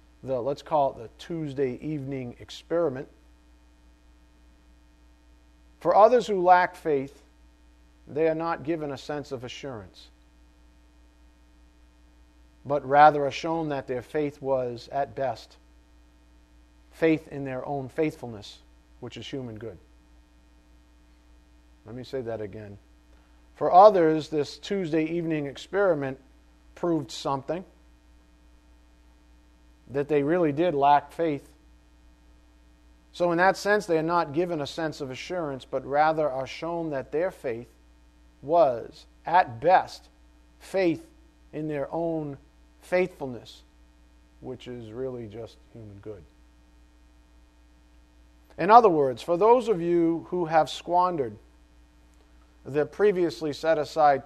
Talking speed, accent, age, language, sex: 115 wpm, American, 40-59, English, male